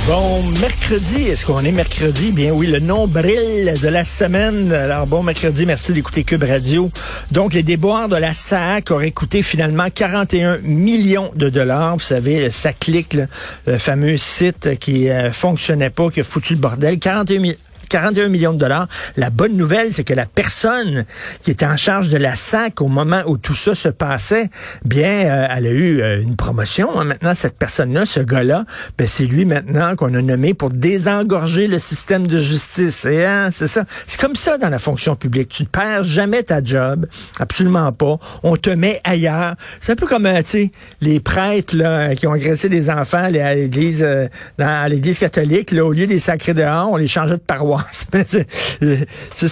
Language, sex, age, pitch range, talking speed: French, male, 50-69, 145-185 Hz, 195 wpm